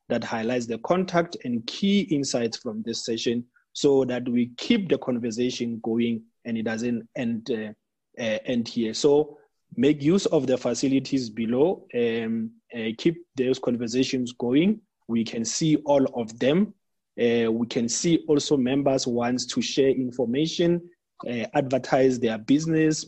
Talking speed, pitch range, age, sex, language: 145 wpm, 125-175 Hz, 30-49, male, English